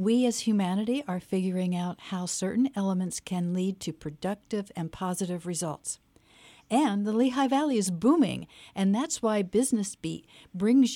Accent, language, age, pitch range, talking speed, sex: American, English, 50-69, 170-215 Hz, 155 wpm, female